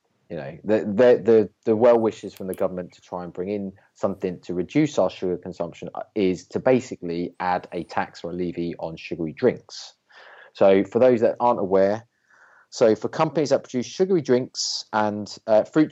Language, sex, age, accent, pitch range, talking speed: English, male, 30-49, British, 90-125 Hz, 190 wpm